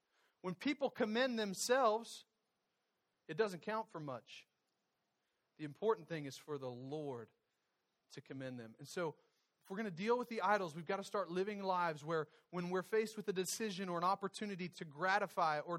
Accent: American